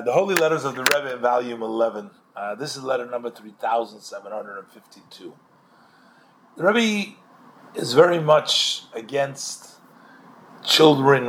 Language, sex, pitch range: English, male, 115-150 Hz